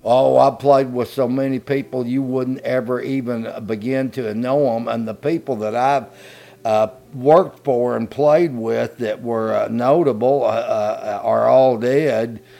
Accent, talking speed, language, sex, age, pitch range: American, 160 wpm, English, male, 50-69, 105-125 Hz